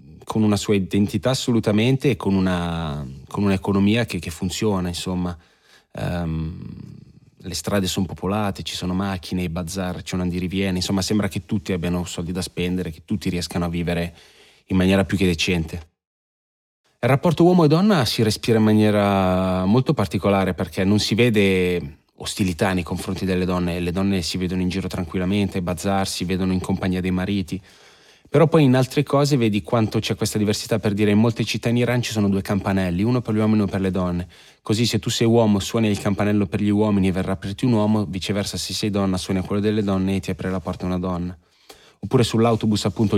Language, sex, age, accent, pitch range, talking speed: Italian, male, 20-39, native, 95-110 Hz, 200 wpm